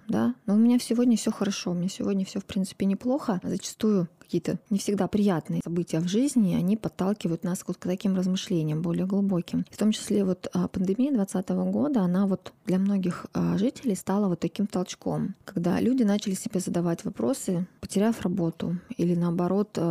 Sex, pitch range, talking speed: female, 175-215 Hz, 170 wpm